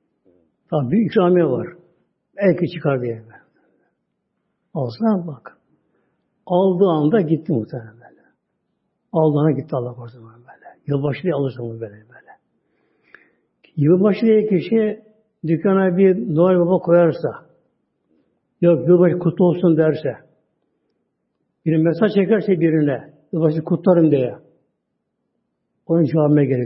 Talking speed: 105 wpm